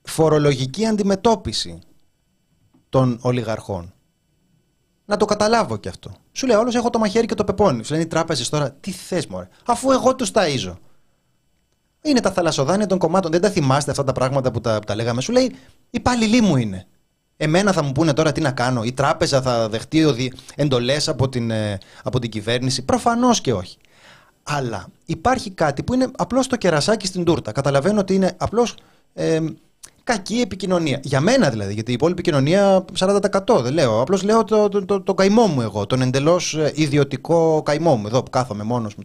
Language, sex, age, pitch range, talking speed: Greek, male, 30-49, 115-190 Hz, 180 wpm